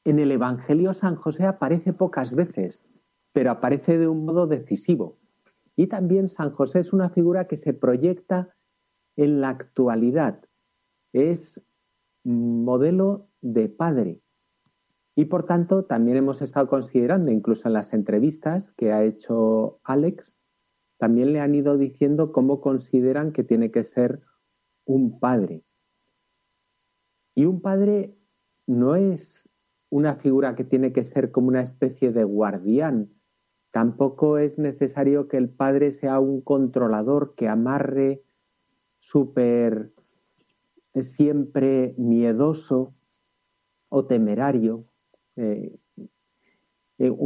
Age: 50-69